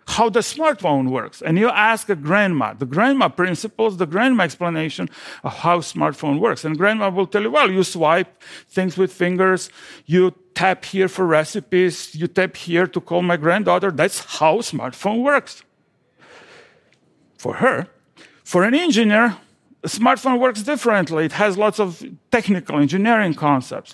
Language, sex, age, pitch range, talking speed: German, male, 50-69, 165-225 Hz, 155 wpm